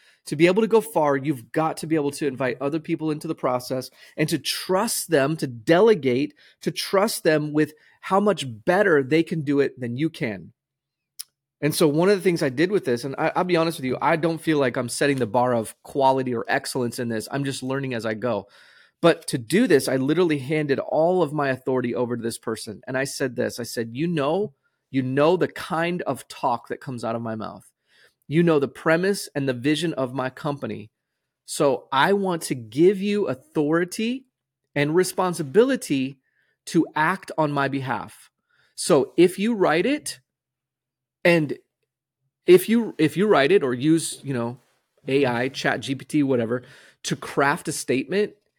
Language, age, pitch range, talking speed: English, 30-49, 130-170 Hz, 195 wpm